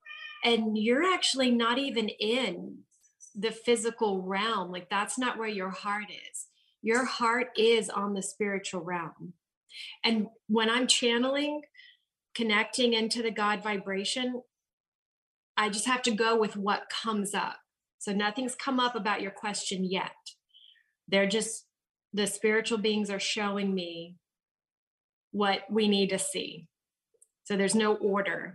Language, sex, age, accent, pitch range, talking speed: English, female, 30-49, American, 205-260 Hz, 140 wpm